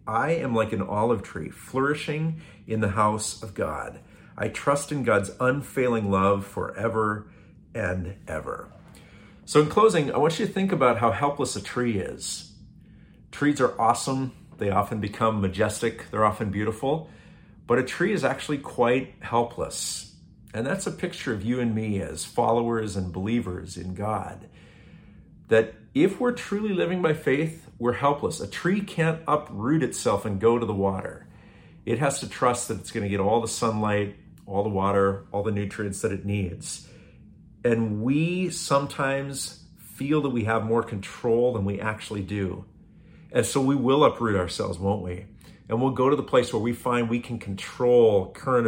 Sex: male